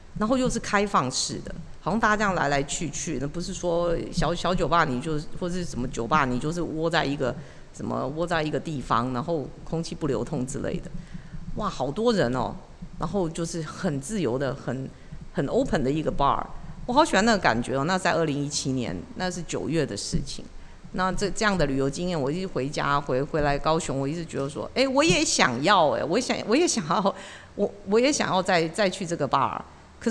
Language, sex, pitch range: Chinese, female, 145-205 Hz